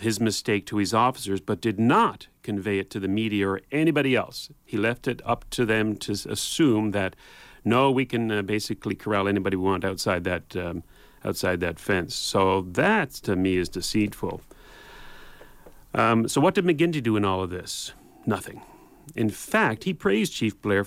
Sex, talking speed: male, 180 wpm